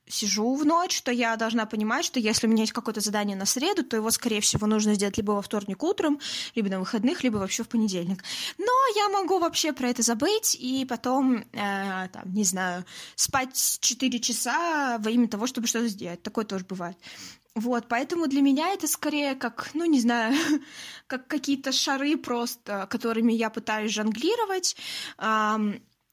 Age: 20-39